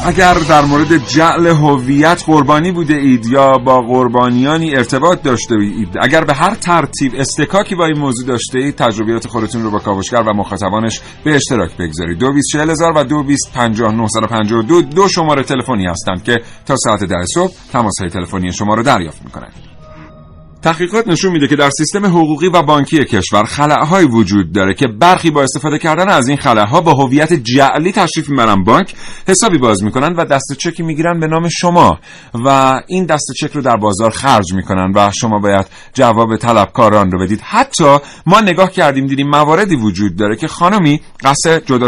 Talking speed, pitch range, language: 170 wpm, 115-160 Hz, Persian